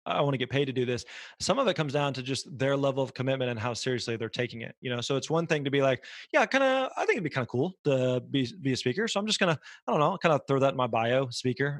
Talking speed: 330 wpm